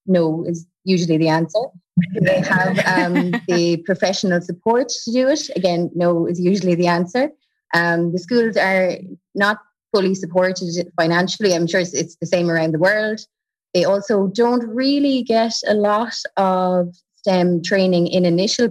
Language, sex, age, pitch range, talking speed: English, female, 20-39, 165-200 Hz, 160 wpm